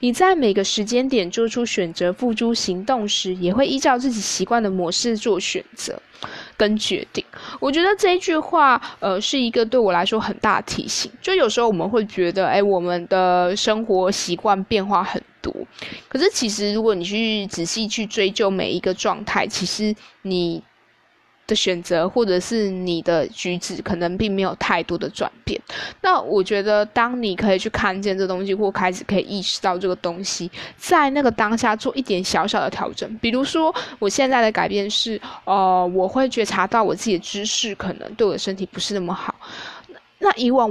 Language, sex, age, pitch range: Chinese, female, 20-39, 185-235 Hz